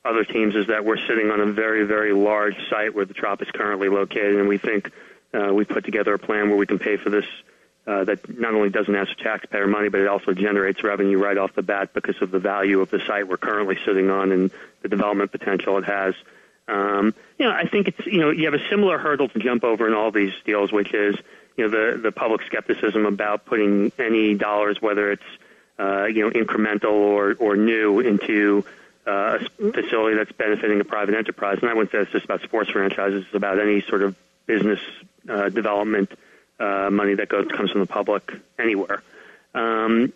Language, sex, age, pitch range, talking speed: English, male, 30-49, 100-115 Hz, 215 wpm